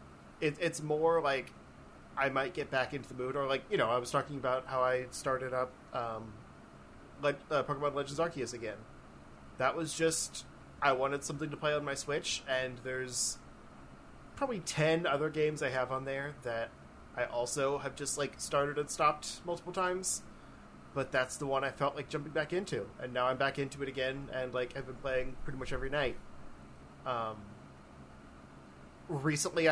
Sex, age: male, 30-49